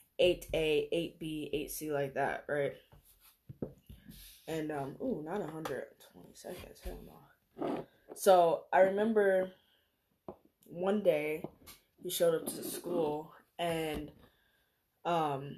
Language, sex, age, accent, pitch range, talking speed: English, female, 10-29, American, 155-200 Hz, 100 wpm